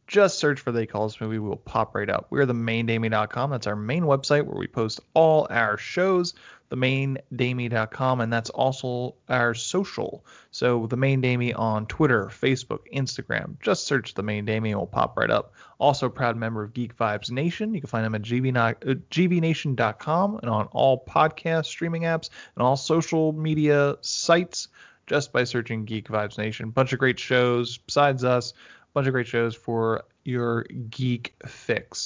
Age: 20-39